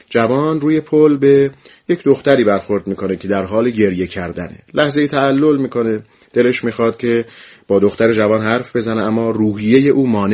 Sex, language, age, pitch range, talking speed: male, Persian, 40-59, 100-135 Hz, 165 wpm